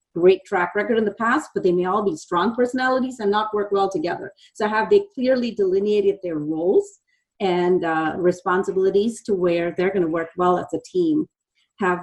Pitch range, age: 175-235 Hz, 40-59